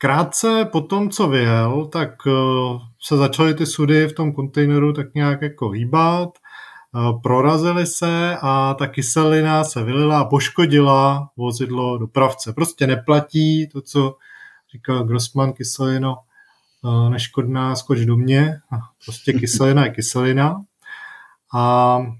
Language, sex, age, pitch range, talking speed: Czech, male, 20-39, 120-150 Hz, 115 wpm